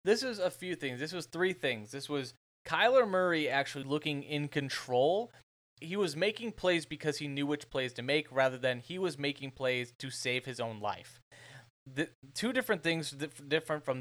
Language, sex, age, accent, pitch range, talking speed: English, male, 20-39, American, 125-150 Hz, 190 wpm